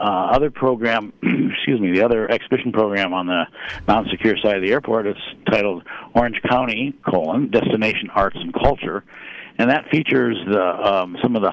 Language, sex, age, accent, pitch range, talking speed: English, male, 60-79, American, 90-110 Hz, 170 wpm